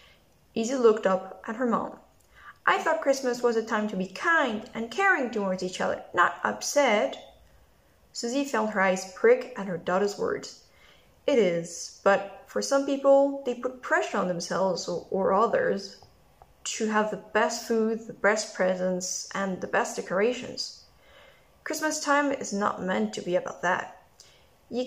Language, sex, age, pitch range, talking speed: English, female, 10-29, 190-265 Hz, 160 wpm